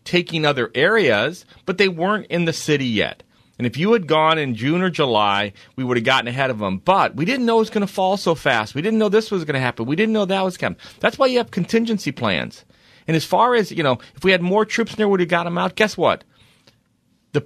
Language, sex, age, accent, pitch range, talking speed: English, male, 40-59, American, 120-185 Hz, 270 wpm